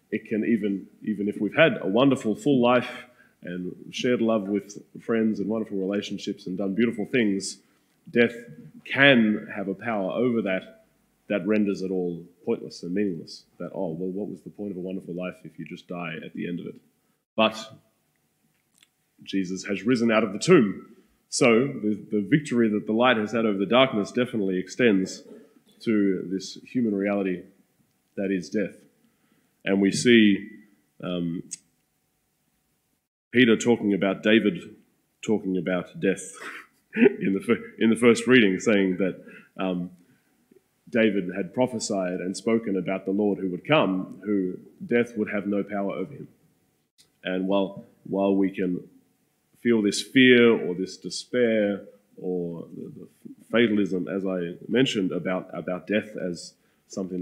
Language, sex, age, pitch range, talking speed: English, male, 20-39, 95-110 Hz, 155 wpm